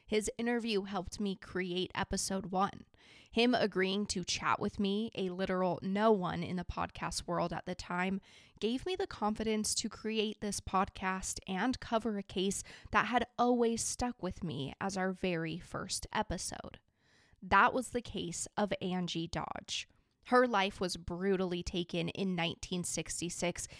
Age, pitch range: 20-39, 180-230 Hz